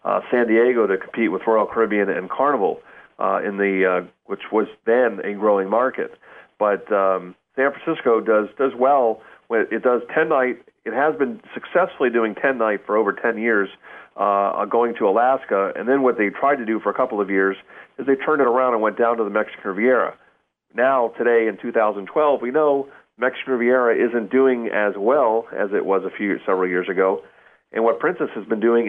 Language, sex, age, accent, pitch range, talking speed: English, male, 40-59, American, 105-125 Hz, 210 wpm